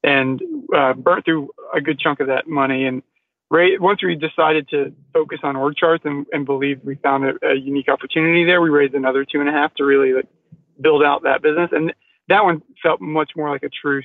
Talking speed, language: 225 wpm, English